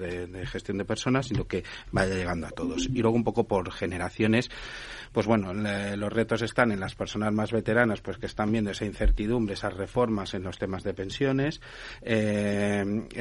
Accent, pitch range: Spanish, 100-120 Hz